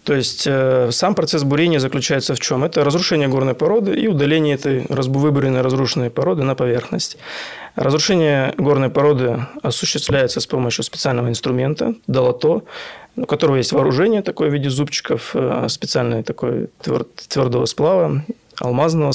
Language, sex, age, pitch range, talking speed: Russian, male, 20-39, 125-155 Hz, 125 wpm